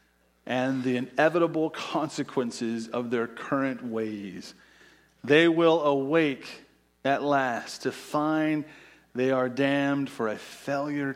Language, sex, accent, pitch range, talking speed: English, male, American, 130-180 Hz, 115 wpm